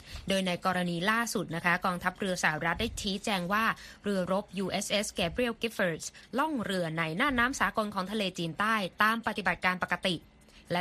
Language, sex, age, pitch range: Thai, female, 20-39, 170-215 Hz